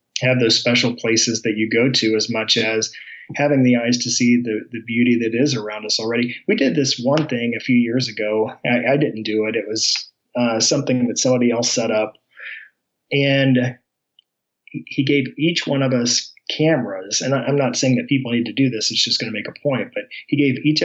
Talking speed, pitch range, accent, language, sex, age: 220 wpm, 115-130 Hz, American, English, male, 30-49